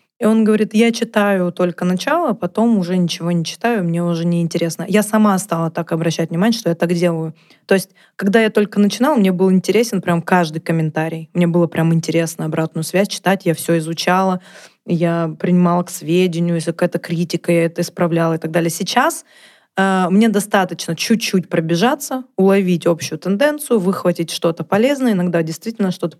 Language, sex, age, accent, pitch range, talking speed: Russian, female, 20-39, native, 170-220 Hz, 170 wpm